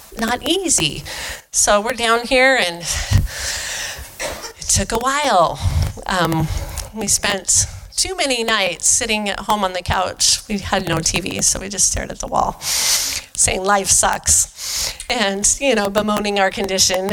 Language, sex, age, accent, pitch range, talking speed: English, female, 40-59, American, 185-235 Hz, 150 wpm